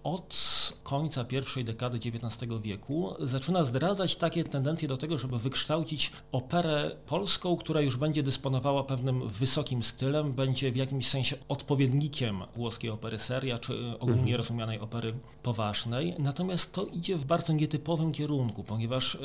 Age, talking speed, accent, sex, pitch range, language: 40-59, 135 wpm, native, male, 120-140 Hz, Polish